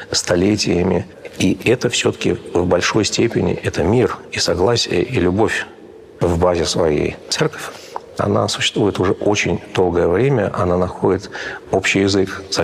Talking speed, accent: 135 wpm, native